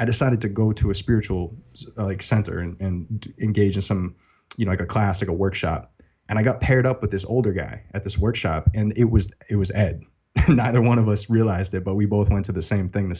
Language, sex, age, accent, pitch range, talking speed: English, male, 20-39, American, 95-110 Hz, 255 wpm